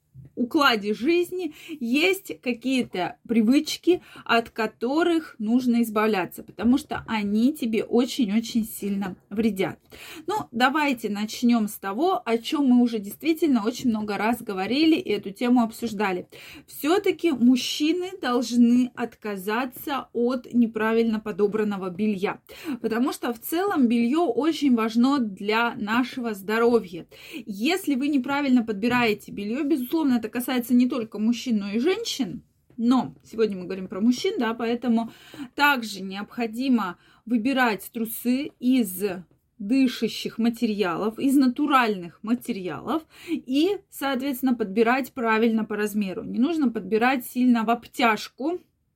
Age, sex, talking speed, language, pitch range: 20-39, female, 120 wpm, Russian, 215-270 Hz